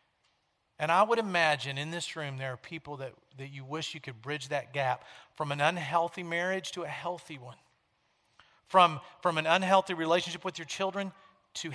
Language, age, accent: English, 40-59, American